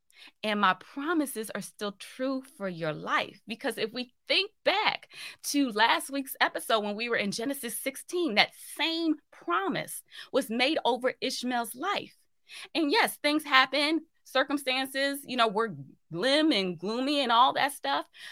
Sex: female